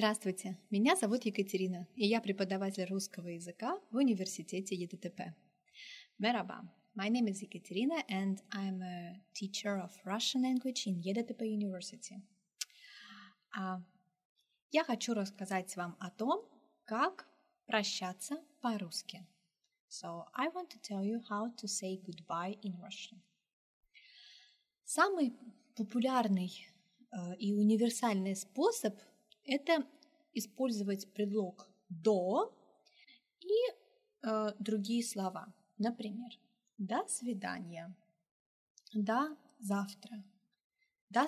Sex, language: female, Turkish